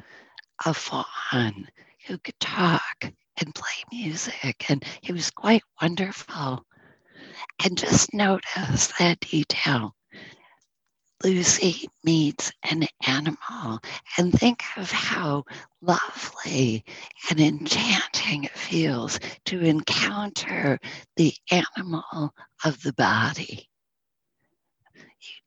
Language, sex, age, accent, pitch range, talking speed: English, female, 50-69, American, 135-185 Hz, 90 wpm